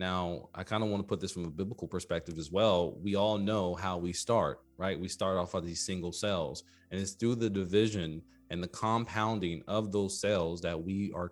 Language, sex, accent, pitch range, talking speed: English, male, American, 85-105 Hz, 225 wpm